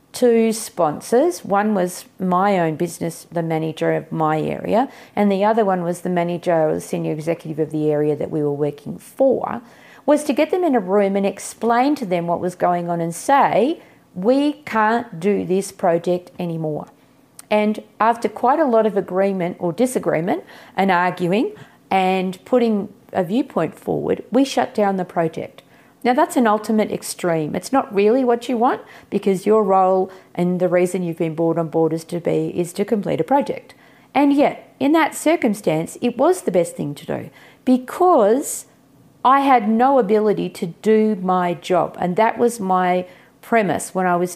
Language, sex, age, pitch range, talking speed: English, female, 40-59, 175-235 Hz, 180 wpm